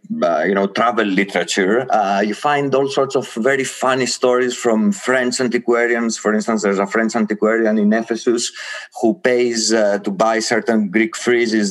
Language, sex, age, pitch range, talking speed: English, male, 30-49, 110-135 Hz, 170 wpm